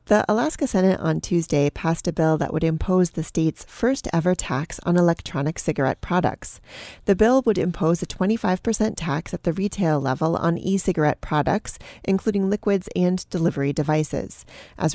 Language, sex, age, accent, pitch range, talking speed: English, female, 30-49, American, 160-200 Hz, 155 wpm